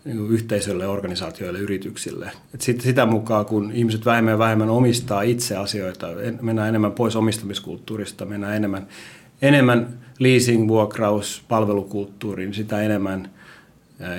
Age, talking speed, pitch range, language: 30-49, 120 wpm, 100-115 Hz, Finnish